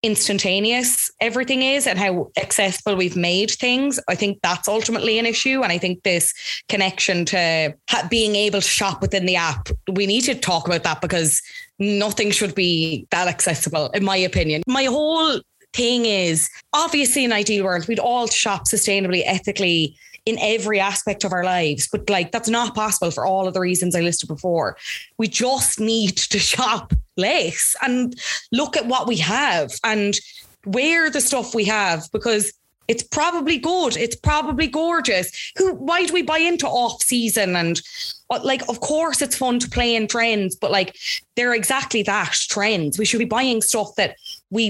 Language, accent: English, Irish